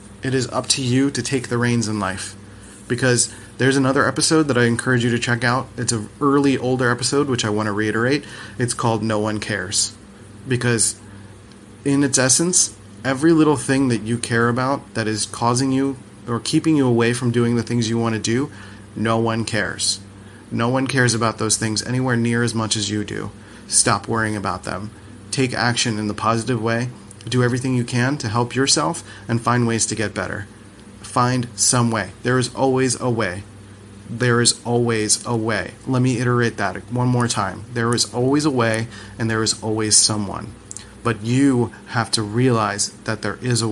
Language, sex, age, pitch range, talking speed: English, male, 30-49, 105-125 Hz, 195 wpm